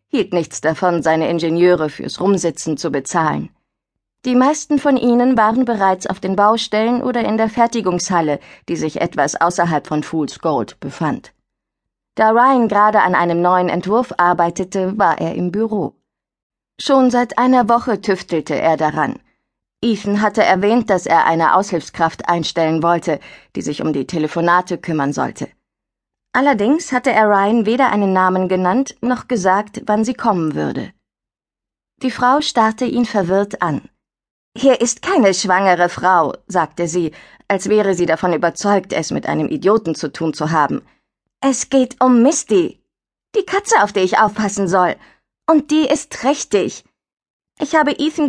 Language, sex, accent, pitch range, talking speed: German, female, German, 175-250 Hz, 155 wpm